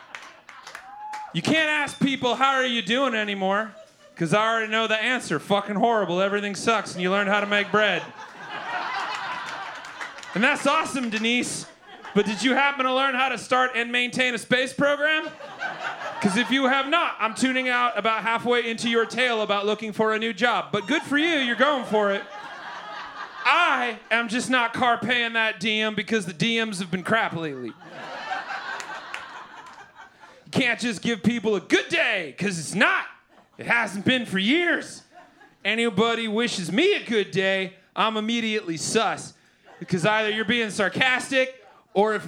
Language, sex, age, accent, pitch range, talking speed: English, male, 30-49, American, 195-250 Hz, 165 wpm